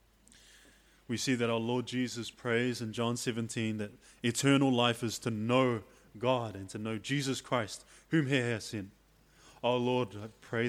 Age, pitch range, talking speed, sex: 20-39, 105-125 Hz, 170 wpm, male